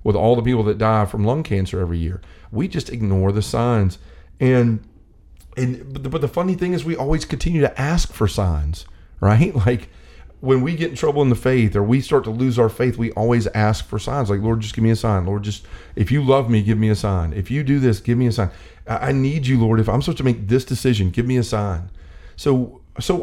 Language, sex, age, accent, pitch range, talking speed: English, male, 40-59, American, 100-145 Hz, 250 wpm